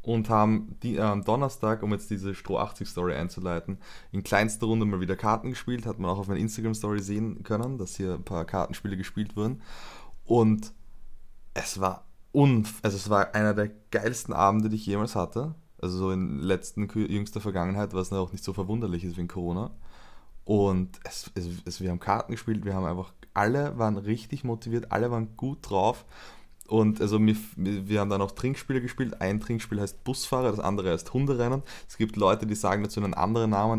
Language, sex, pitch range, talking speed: German, male, 95-115 Hz, 190 wpm